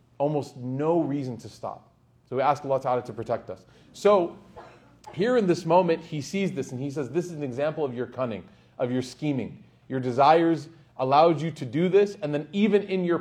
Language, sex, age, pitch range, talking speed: English, male, 30-49, 125-165 Hz, 210 wpm